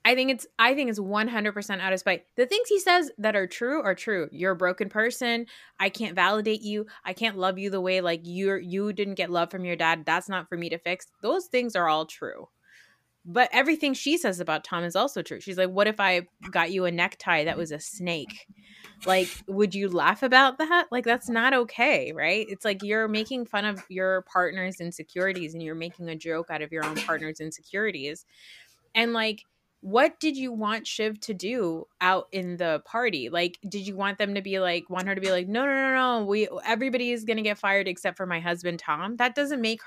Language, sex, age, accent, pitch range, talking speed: English, female, 20-39, American, 185-250 Hz, 225 wpm